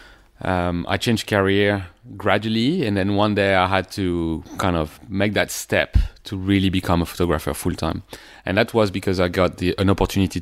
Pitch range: 90-105 Hz